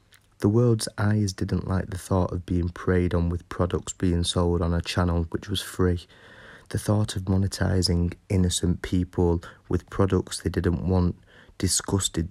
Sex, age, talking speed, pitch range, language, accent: male, 30-49, 160 wpm, 85-100 Hz, English, British